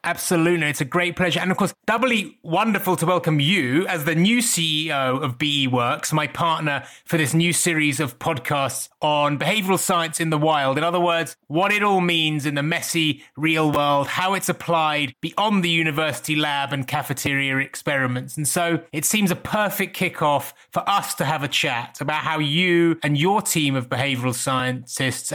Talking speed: 185 wpm